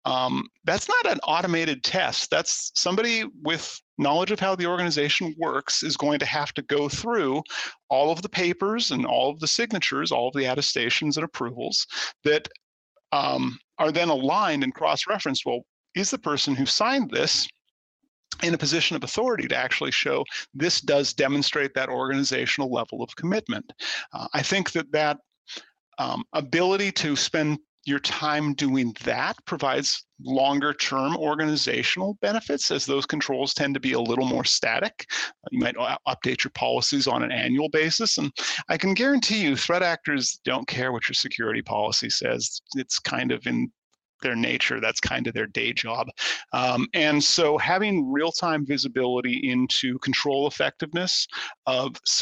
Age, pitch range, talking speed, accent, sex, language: 40-59, 140-185 Hz, 160 wpm, American, male, English